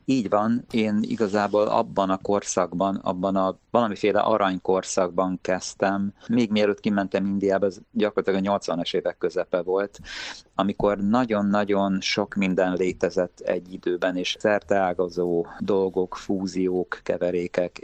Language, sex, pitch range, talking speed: Hungarian, male, 95-100 Hz, 120 wpm